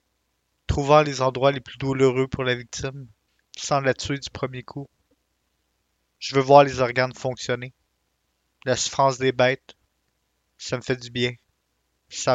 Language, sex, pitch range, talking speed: French, male, 100-130 Hz, 150 wpm